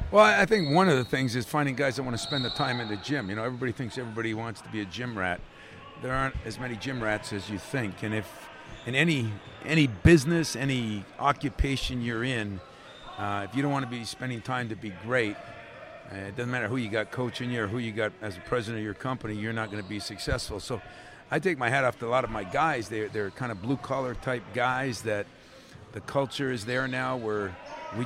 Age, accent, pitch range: 50-69, American, 105-135 Hz